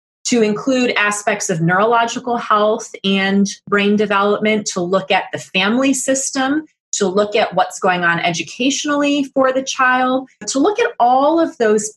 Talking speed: 155 wpm